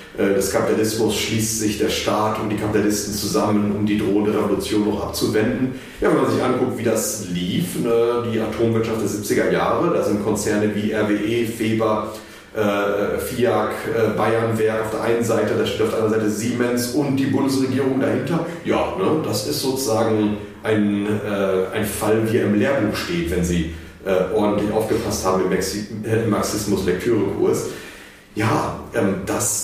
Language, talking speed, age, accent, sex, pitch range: German, 160 wpm, 40-59, German, male, 105-120 Hz